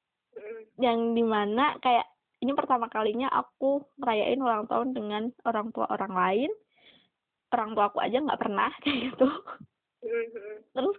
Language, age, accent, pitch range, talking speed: Indonesian, 20-39, native, 230-315 Hz, 125 wpm